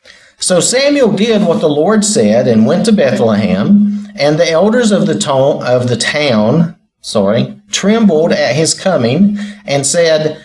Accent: American